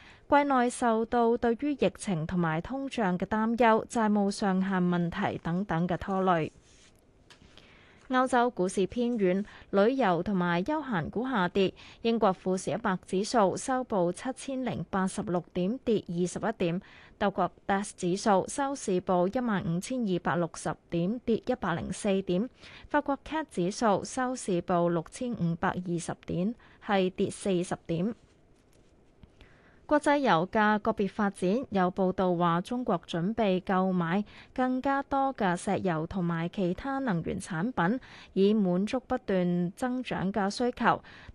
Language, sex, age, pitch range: Chinese, female, 20-39, 180-235 Hz